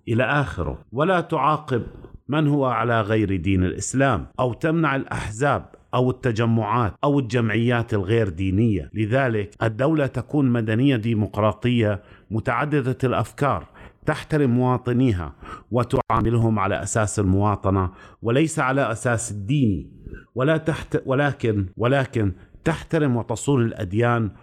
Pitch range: 100-130 Hz